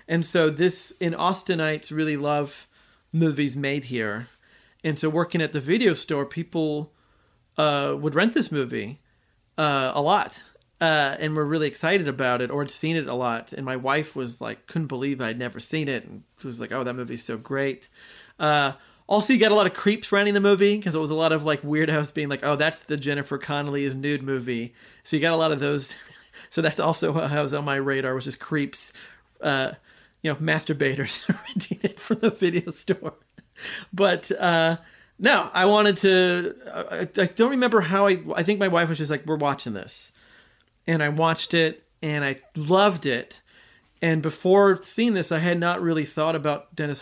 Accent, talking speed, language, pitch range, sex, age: American, 205 wpm, English, 135-170 Hz, male, 40-59